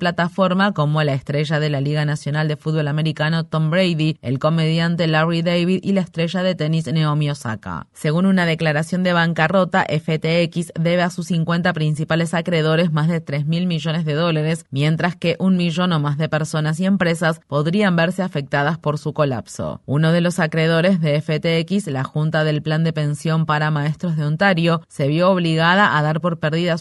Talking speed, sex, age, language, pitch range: 185 wpm, female, 30-49, Spanish, 155-175 Hz